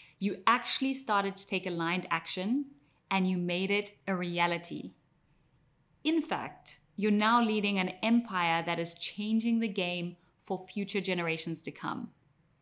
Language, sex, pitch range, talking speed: English, female, 165-210 Hz, 145 wpm